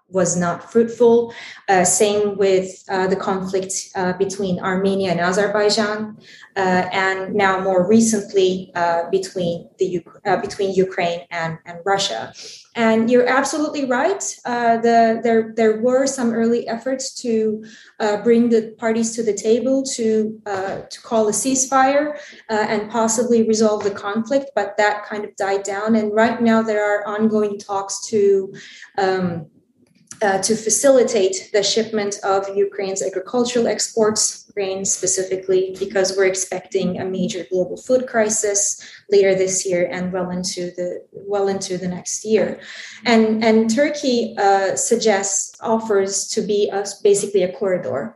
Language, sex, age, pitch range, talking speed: English, female, 20-39, 190-225 Hz, 145 wpm